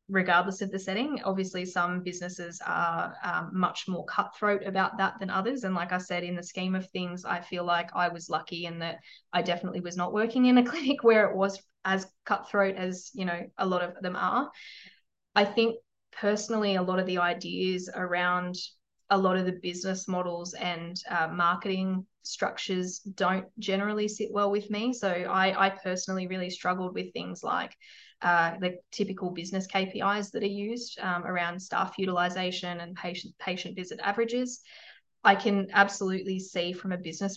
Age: 20-39